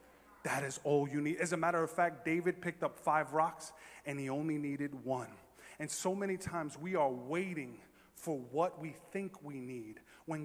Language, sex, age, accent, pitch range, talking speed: English, male, 30-49, American, 140-180 Hz, 195 wpm